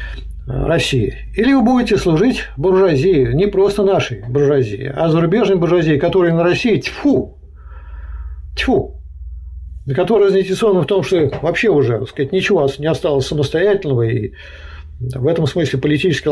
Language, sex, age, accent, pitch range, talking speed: Russian, male, 50-69, native, 120-165 Hz, 130 wpm